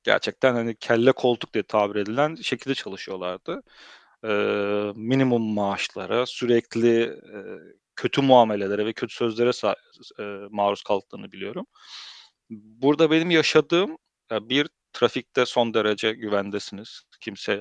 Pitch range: 105-130 Hz